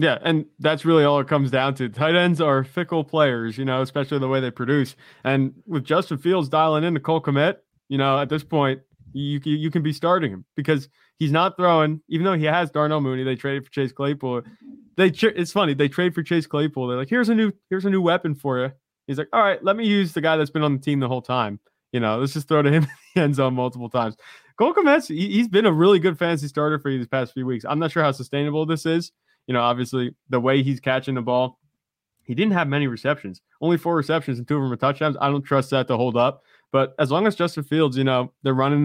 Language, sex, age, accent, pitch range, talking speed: English, male, 20-39, American, 130-160 Hz, 260 wpm